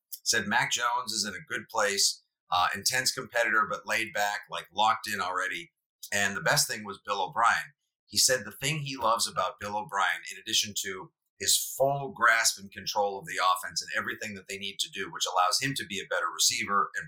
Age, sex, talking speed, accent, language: 40-59, male, 215 wpm, American, English